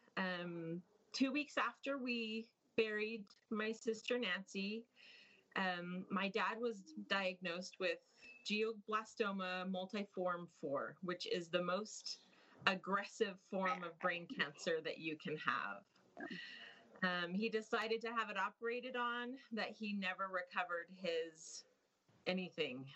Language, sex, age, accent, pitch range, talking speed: English, female, 30-49, American, 180-235 Hz, 120 wpm